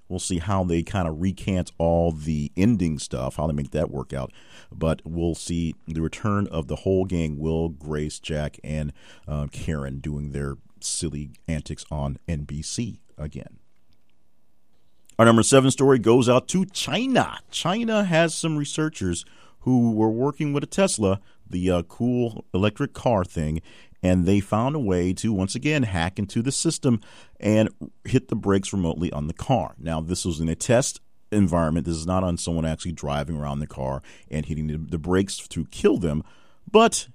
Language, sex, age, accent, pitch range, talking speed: English, male, 40-59, American, 75-105 Hz, 175 wpm